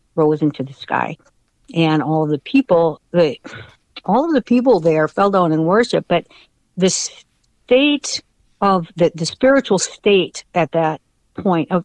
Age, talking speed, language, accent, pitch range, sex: 60-79, 145 wpm, English, American, 160-195 Hz, female